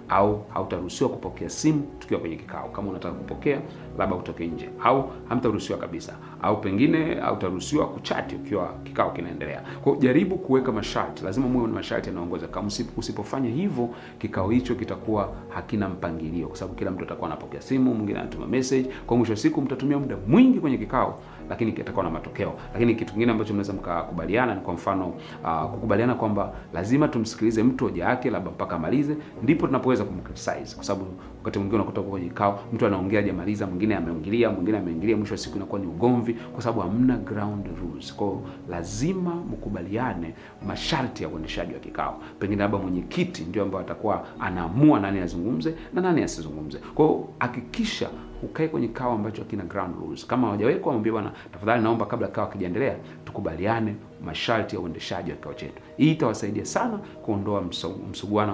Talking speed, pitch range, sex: 165 wpm, 90-120 Hz, male